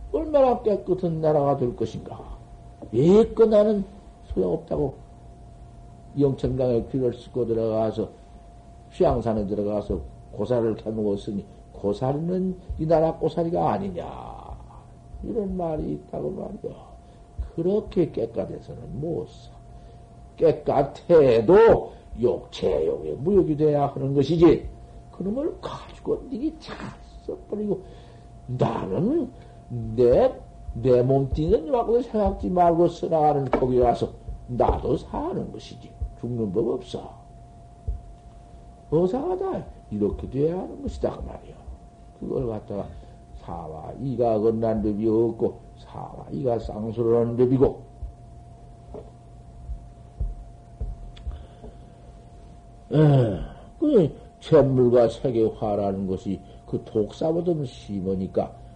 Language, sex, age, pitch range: Korean, male, 60-79, 110-175 Hz